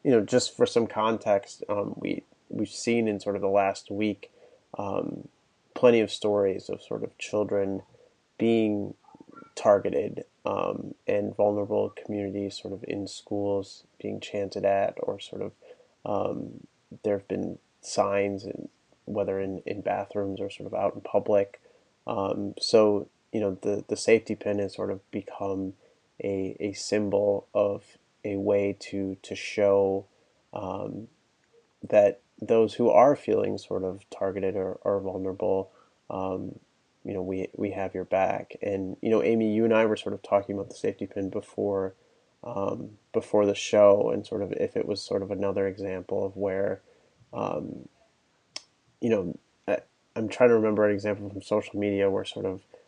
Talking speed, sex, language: 165 wpm, male, English